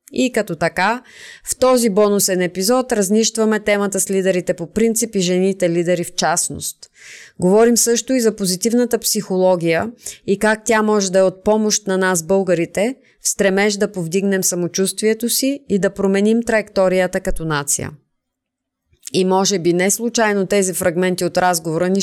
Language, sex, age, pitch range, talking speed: Bulgarian, female, 20-39, 175-215 Hz, 155 wpm